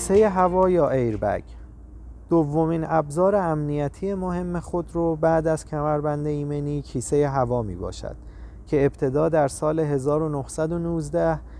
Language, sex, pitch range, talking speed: Persian, male, 130-165 Hz, 120 wpm